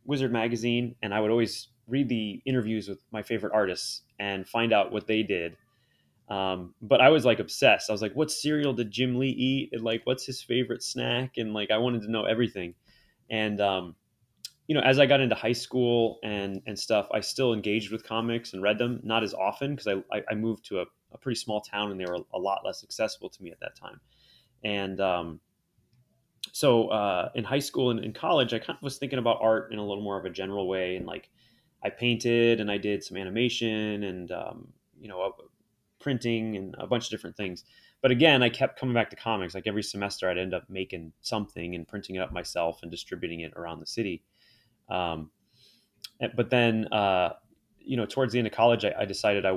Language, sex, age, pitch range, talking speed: English, male, 20-39, 100-120 Hz, 220 wpm